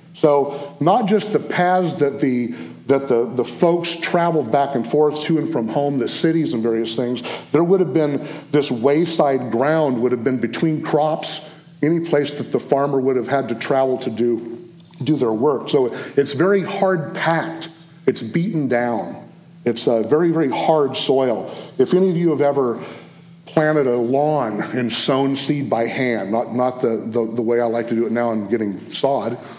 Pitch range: 120-165 Hz